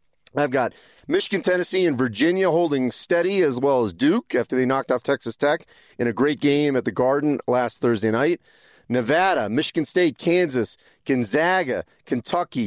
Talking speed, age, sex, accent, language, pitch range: 160 wpm, 40-59, male, American, English, 135-180 Hz